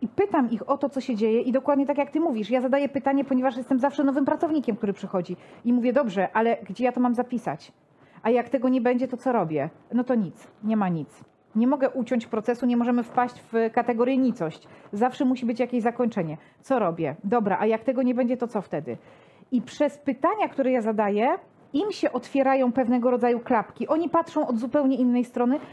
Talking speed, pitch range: 210 wpm, 230-270 Hz